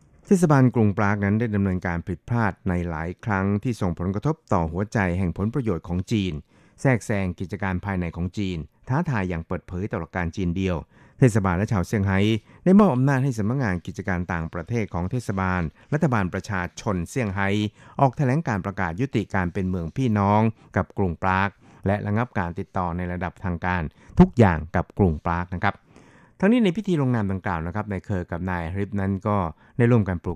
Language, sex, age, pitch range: Thai, male, 60-79, 90-120 Hz